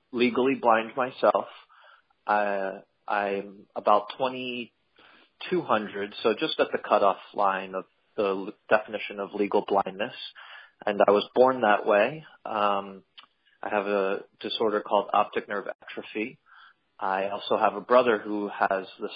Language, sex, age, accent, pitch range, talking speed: English, male, 30-49, American, 100-120 Hz, 130 wpm